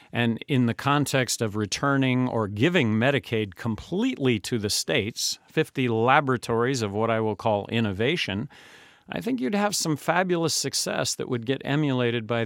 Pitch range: 110-145 Hz